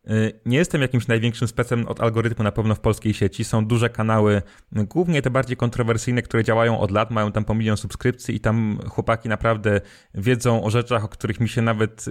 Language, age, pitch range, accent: Polish, 20-39, 110-125 Hz, native